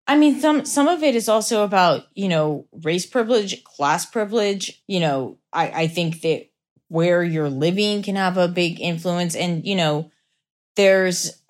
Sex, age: female, 30-49